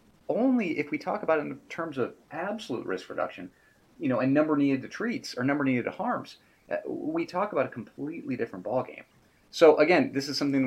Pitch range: 100-135 Hz